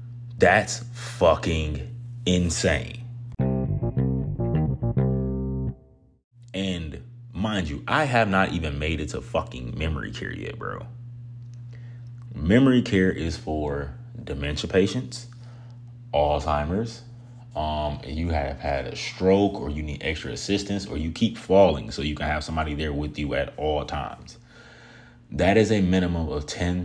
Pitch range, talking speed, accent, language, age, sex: 75-120 Hz, 130 wpm, American, English, 30-49, male